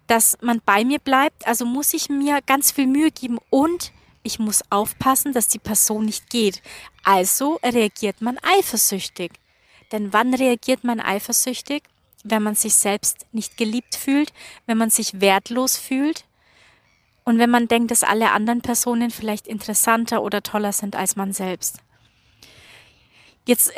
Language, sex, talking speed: German, female, 150 wpm